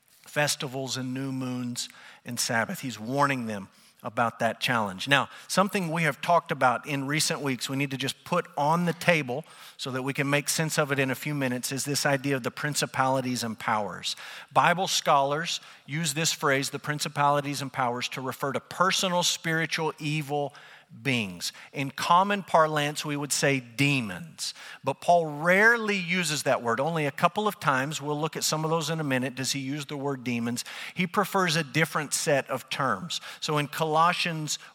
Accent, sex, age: American, male, 50-69